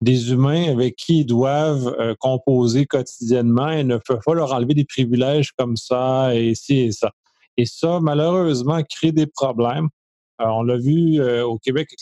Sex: male